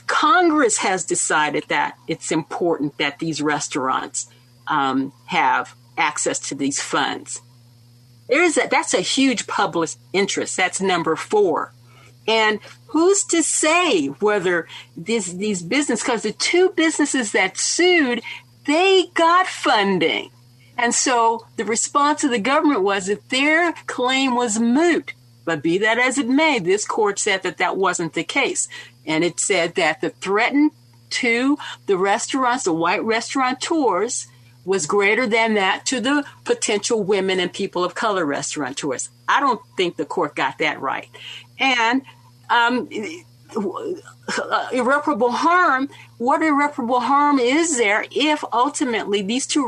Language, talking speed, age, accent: English, 140 wpm, 50-69, American